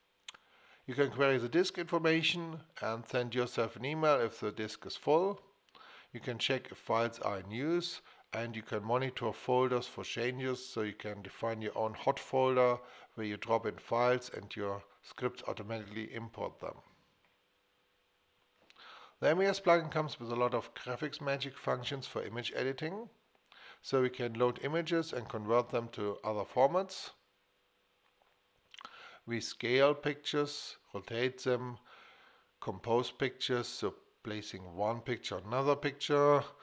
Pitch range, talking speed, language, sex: 110-140 Hz, 145 wpm, English, male